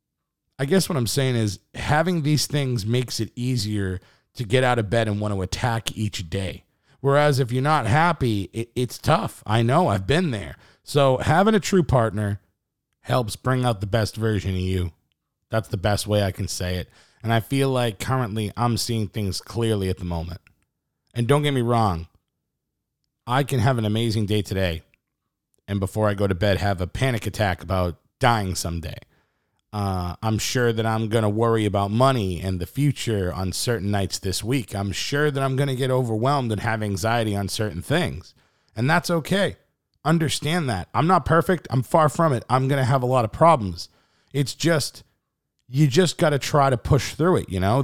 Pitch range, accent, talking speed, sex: 100-140 Hz, American, 200 wpm, male